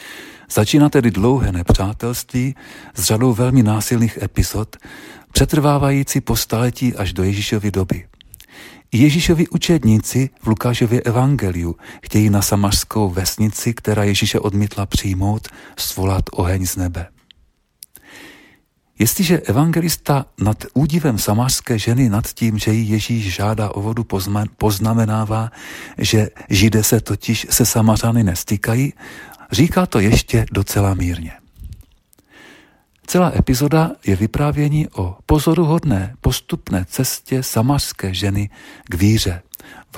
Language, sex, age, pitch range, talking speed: Czech, male, 40-59, 95-125 Hz, 110 wpm